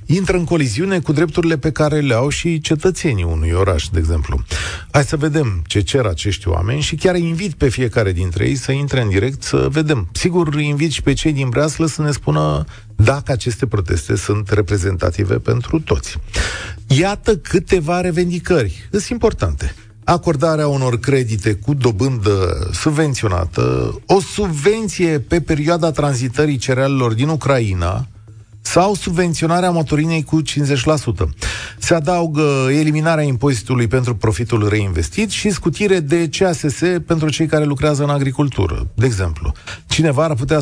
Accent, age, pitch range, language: native, 40-59, 105-160 Hz, Romanian